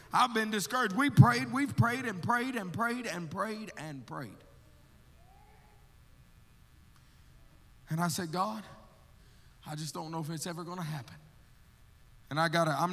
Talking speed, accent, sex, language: 145 wpm, American, male, English